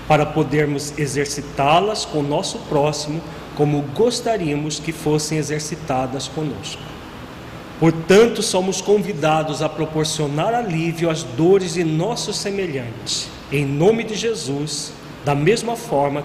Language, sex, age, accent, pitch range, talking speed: Portuguese, male, 40-59, Brazilian, 140-175 Hz, 115 wpm